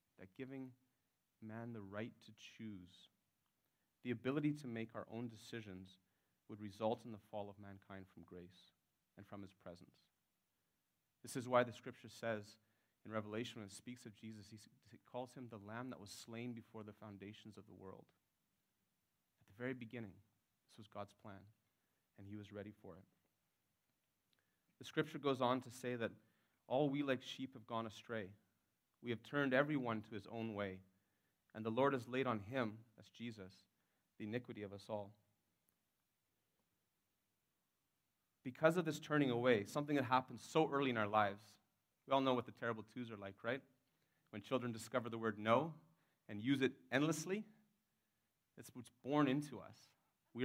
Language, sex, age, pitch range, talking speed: English, male, 30-49, 105-130 Hz, 170 wpm